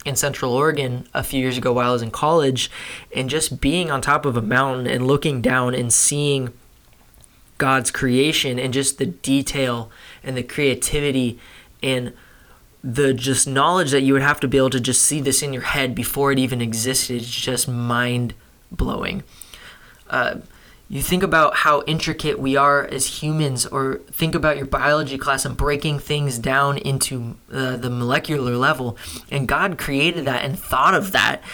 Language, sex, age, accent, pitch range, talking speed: English, male, 20-39, American, 130-150 Hz, 175 wpm